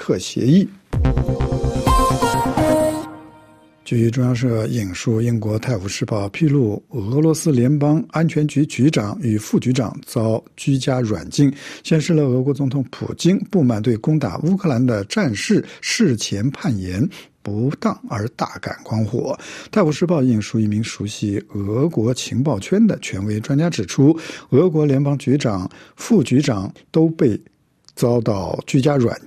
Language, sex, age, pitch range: Chinese, male, 60-79, 115-155 Hz